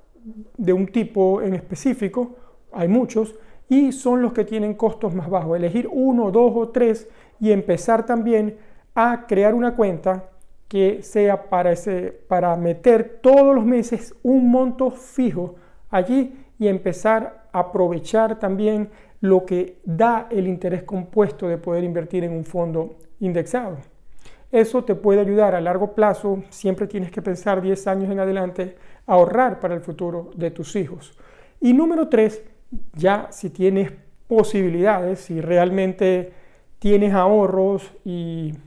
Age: 40-59